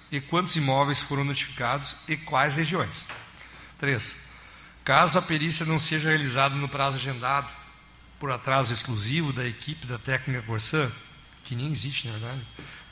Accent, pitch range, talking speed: Brazilian, 130-155 Hz, 150 wpm